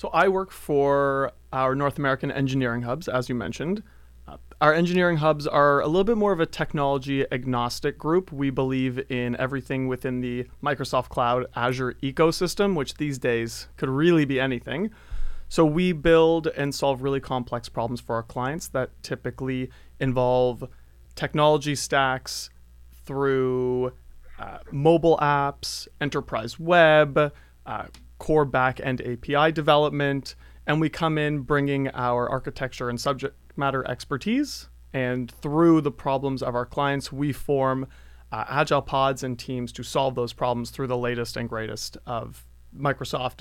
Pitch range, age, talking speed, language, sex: 125-150 Hz, 30-49, 145 wpm, English, male